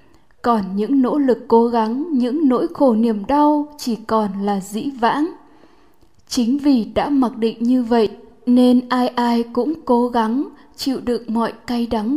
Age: 10-29